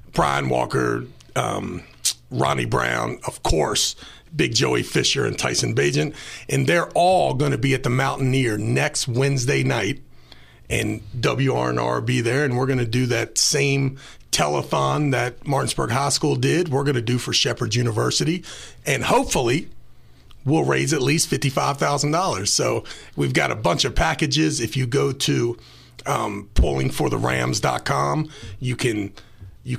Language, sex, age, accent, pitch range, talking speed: English, male, 40-59, American, 110-150 Hz, 145 wpm